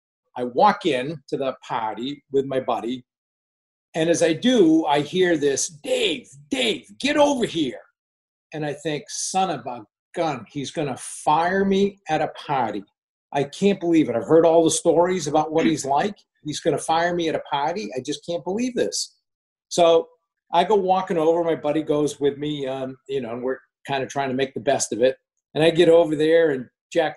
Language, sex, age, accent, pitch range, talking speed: English, male, 50-69, American, 140-185 Hz, 205 wpm